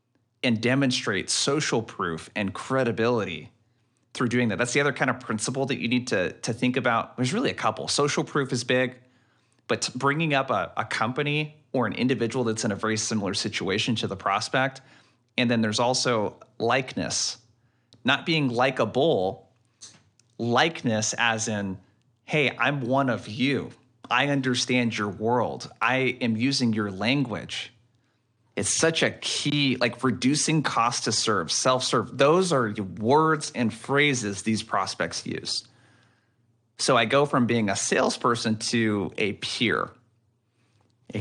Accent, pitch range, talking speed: American, 115-130 Hz, 150 wpm